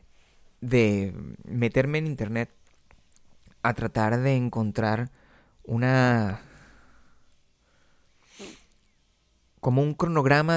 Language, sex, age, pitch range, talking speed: Spanish, male, 30-49, 105-140 Hz, 70 wpm